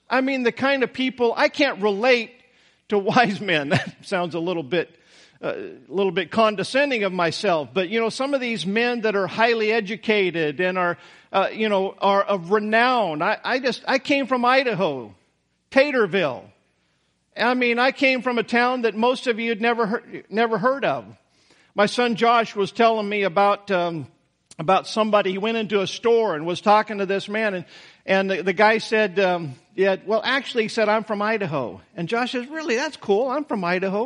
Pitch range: 195-245 Hz